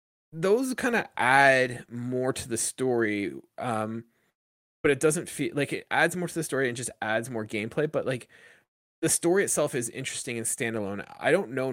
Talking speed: 190 wpm